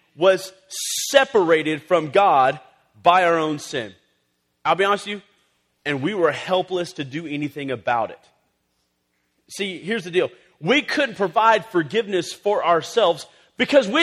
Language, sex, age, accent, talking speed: English, male, 40-59, American, 145 wpm